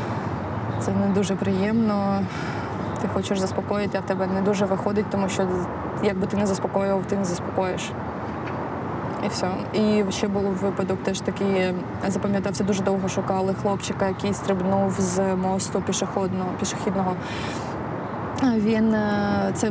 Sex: female